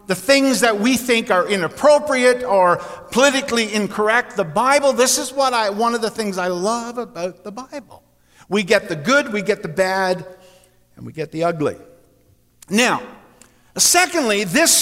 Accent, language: American, English